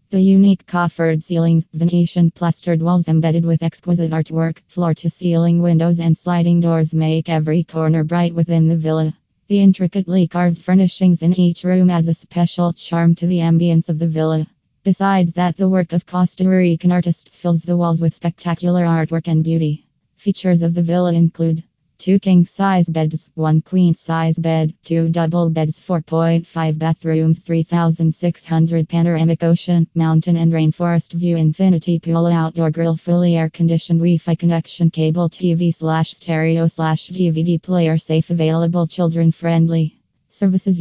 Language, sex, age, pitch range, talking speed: English, female, 20-39, 165-175 Hz, 145 wpm